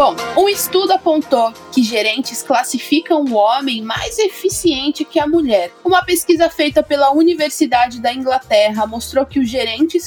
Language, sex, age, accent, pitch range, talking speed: Portuguese, female, 20-39, Brazilian, 215-310 Hz, 150 wpm